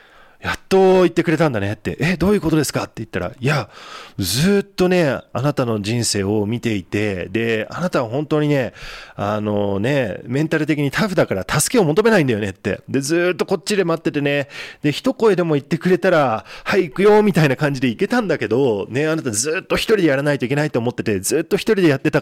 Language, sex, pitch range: Japanese, male, 115-175 Hz